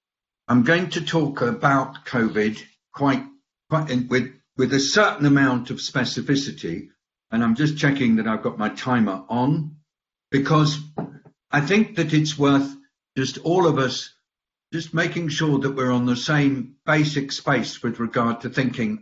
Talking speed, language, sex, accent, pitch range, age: 160 wpm, English, male, British, 120-145 Hz, 60-79